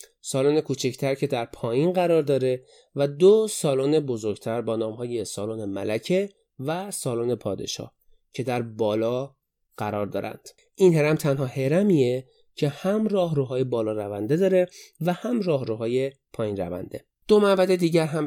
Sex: male